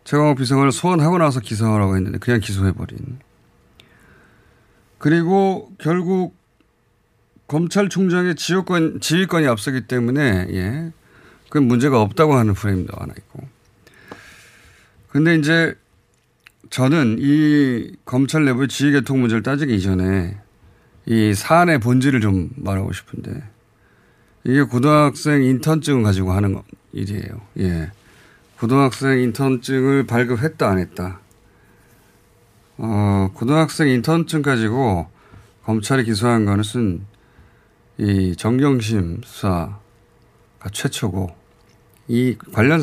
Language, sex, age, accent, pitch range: Korean, male, 30-49, native, 100-150 Hz